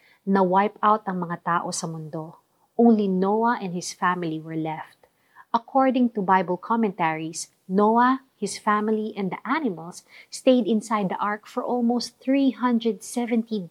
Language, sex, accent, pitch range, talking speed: Filipino, female, native, 175-230 Hz, 140 wpm